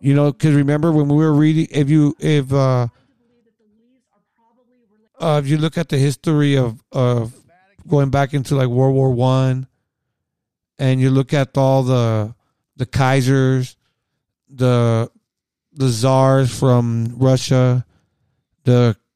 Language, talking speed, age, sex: English, 130 wpm, 40-59, male